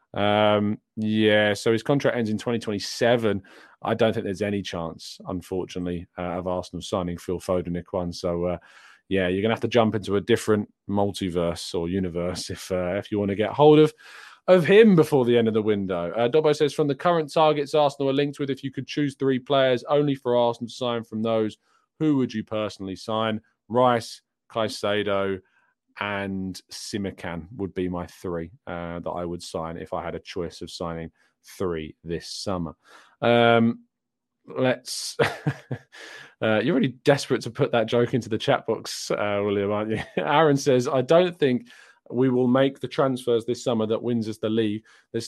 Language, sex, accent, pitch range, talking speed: English, male, British, 100-130 Hz, 190 wpm